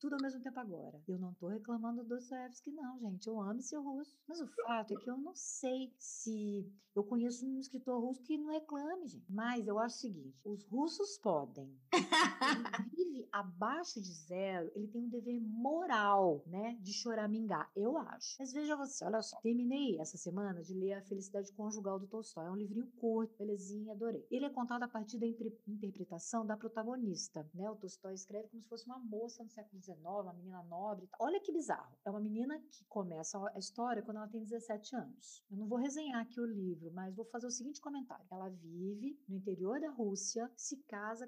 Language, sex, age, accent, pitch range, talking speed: Portuguese, female, 50-69, Brazilian, 190-250 Hz, 205 wpm